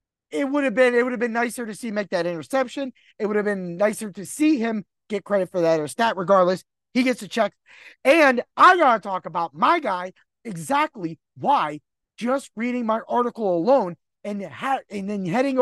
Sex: male